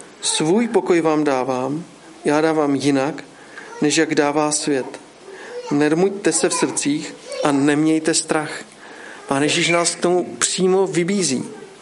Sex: male